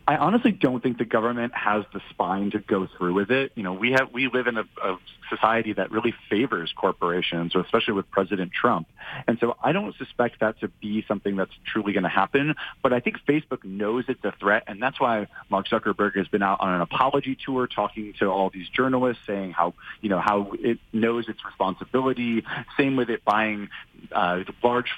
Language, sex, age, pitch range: English, male, 30-49, 95-125 Hz